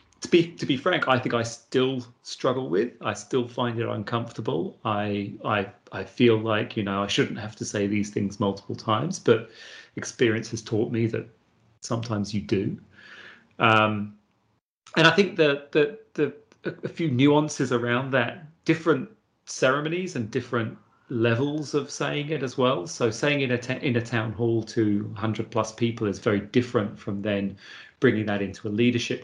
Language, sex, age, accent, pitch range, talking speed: English, male, 30-49, British, 105-125 Hz, 170 wpm